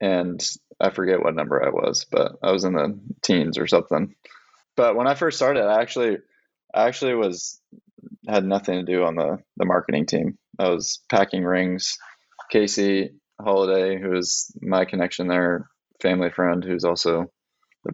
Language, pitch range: English, 90-110 Hz